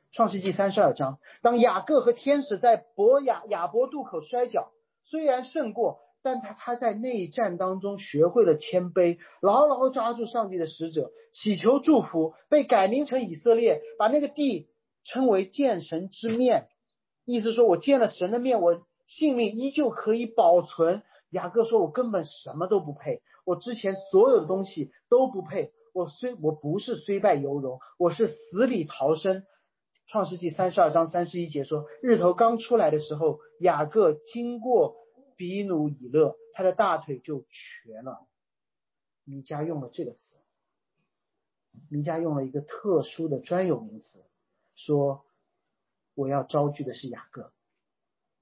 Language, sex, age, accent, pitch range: Chinese, male, 40-59, native, 165-245 Hz